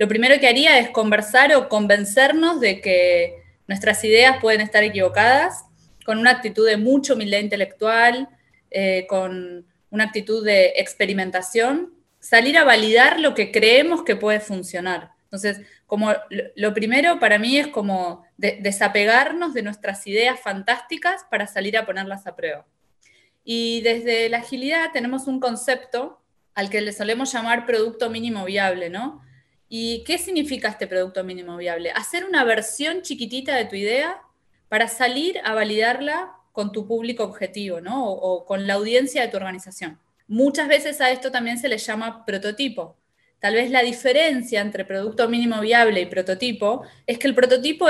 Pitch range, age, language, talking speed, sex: 205-260 Hz, 20-39, Spanish, 160 wpm, female